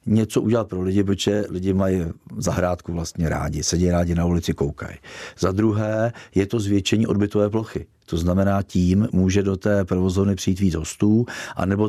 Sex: male